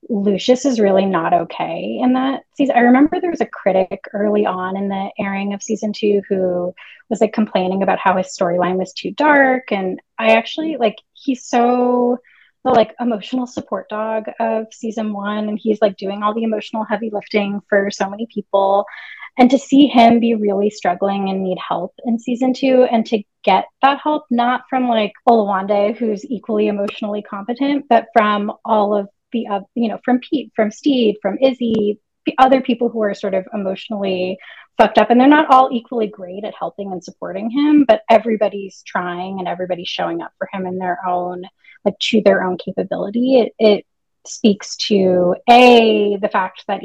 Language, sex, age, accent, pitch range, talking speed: English, female, 30-49, American, 195-240 Hz, 185 wpm